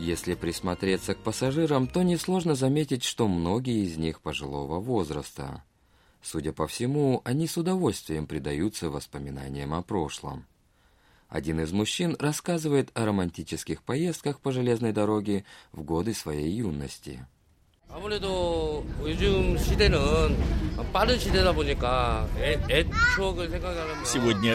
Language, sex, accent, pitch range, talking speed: Russian, male, native, 85-130 Hz, 95 wpm